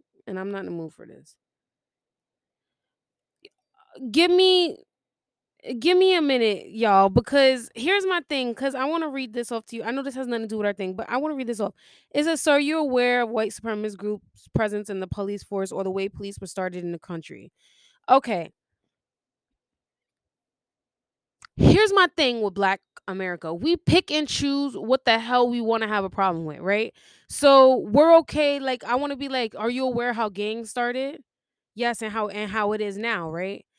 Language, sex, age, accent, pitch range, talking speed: English, female, 20-39, American, 205-265 Hz, 205 wpm